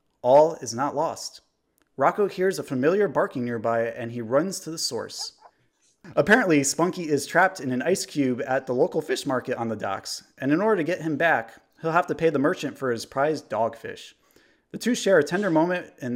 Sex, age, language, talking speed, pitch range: male, 30-49, English, 210 wpm, 120-160 Hz